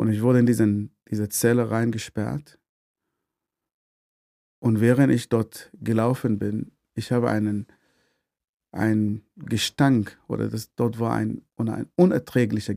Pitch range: 105-125 Hz